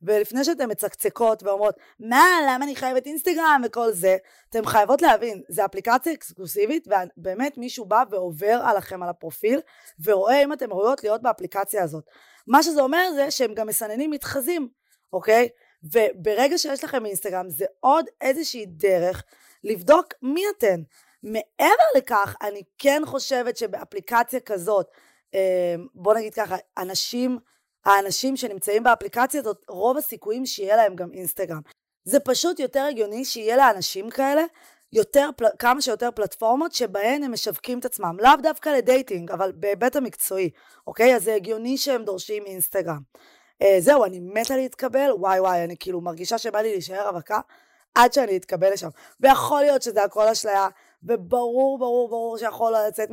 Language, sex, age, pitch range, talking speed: Hebrew, female, 20-39, 200-270 Hz, 145 wpm